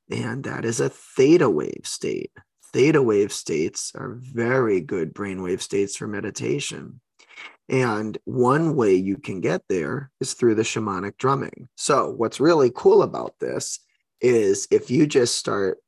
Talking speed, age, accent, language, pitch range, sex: 150 wpm, 20-39, American, English, 115-140 Hz, male